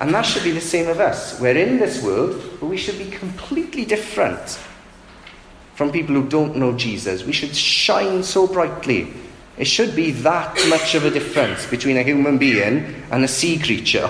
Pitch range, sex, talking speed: 130-170 Hz, male, 190 wpm